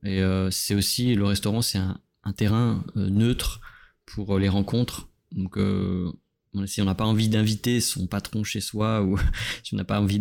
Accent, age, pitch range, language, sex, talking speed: French, 20-39, 95-110 Hz, French, male, 200 wpm